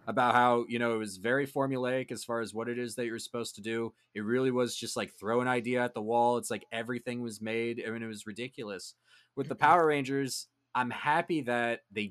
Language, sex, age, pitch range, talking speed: English, male, 20-39, 100-125 Hz, 240 wpm